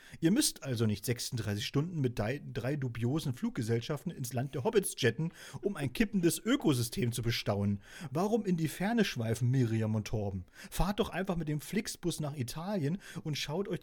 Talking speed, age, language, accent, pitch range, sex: 175 wpm, 40-59, German, German, 115-175 Hz, male